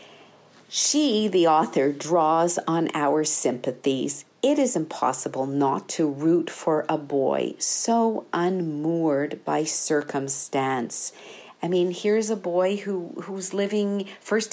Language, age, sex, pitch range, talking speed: English, 50-69, female, 155-200 Hz, 120 wpm